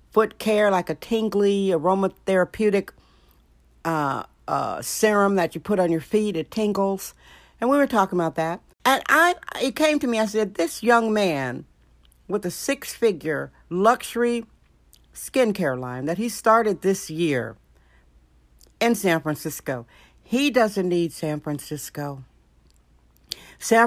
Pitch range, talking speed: 150-220 Hz, 140 wpm